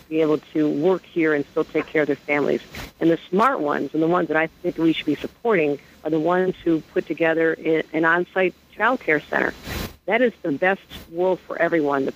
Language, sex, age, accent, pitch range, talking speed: English, female, 50-69, American, 155-185 Hz, 220 wpm